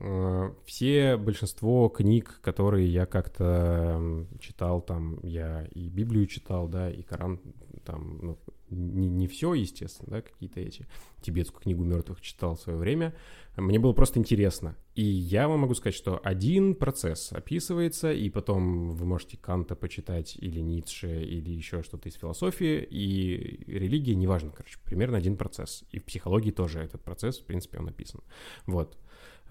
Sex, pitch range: male, 85-110 Hz